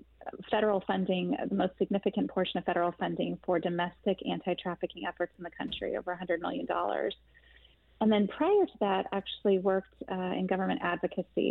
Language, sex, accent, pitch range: English, female, American, 180-220 Hz